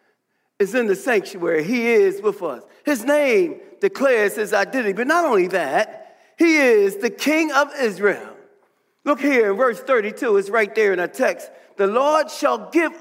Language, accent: English, American